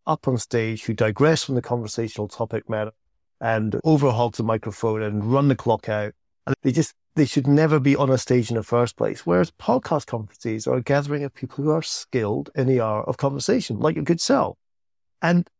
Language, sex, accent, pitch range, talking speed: English, male, British, 115-155 Hz, 210 wpm